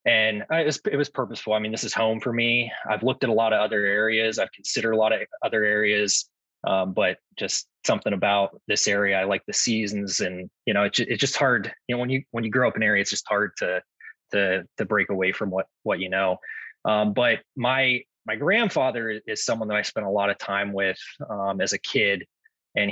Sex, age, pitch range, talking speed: male, 20-39, 100-120 Hz, 240 wpm